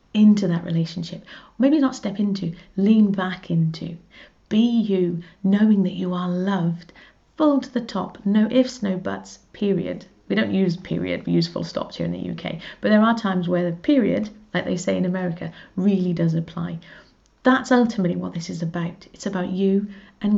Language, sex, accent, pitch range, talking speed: English, female, British, 175-210 Hz, 185 wpm